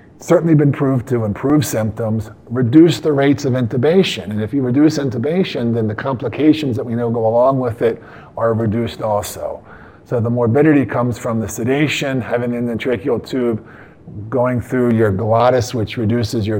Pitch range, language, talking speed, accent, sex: 115-135 Hz, English, 170 wpm, American, male